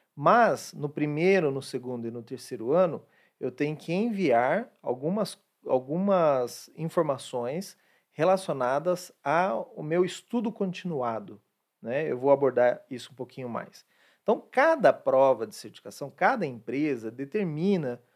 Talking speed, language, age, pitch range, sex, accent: 120 wpm, Portuguese, 40-59, 130-175 Hz, male, Brazilian